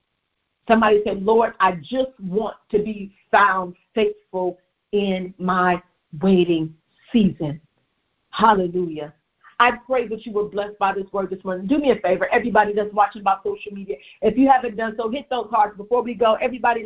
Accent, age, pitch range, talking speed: American, 50-69, 205-245 Hz, 170 wpm